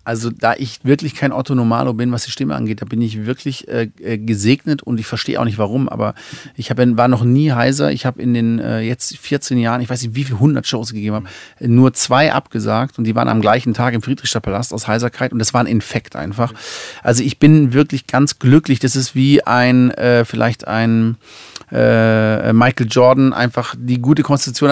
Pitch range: 115-135 Hz